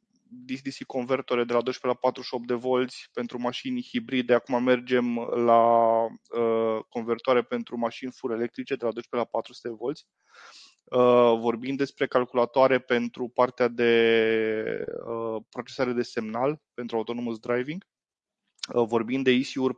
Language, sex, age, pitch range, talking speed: Romanian, male, 20-39, 115-135 Hz, 130 wpm